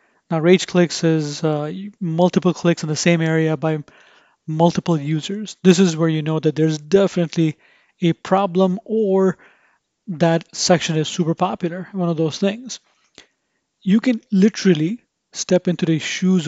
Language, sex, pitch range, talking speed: English, male, 160-190 Hz, 150 wpm